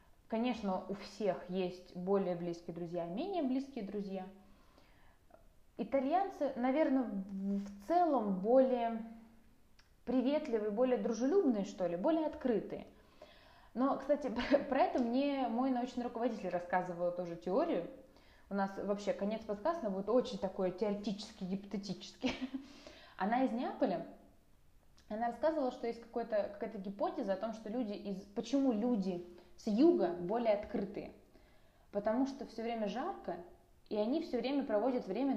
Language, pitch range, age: Russian, 195-270 Hz, 20-39